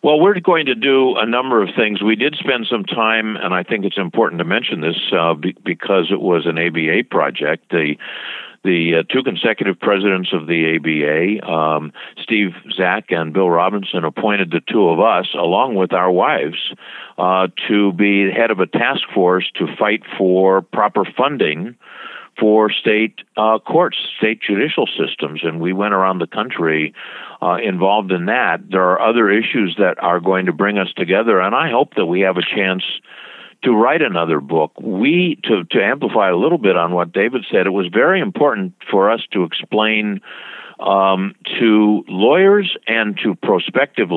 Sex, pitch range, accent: male, 95-115 Hz, American